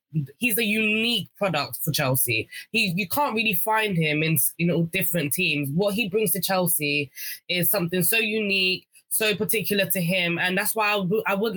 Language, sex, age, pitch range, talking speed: English, female, 20-39, 165-200 Hz, 190 wpm